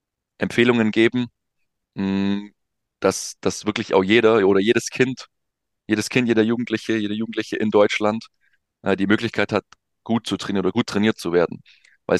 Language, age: German, 20-39